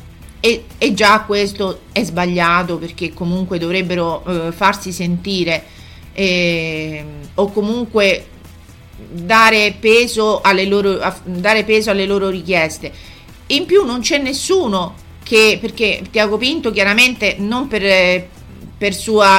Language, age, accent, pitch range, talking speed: Italian, 40-59, native, 180-215 Hz, 110 wpm